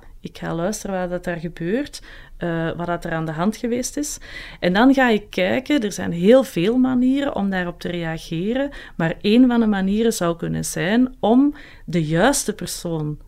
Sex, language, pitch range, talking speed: female, Dutch, 165-230 Hz, 180 wpm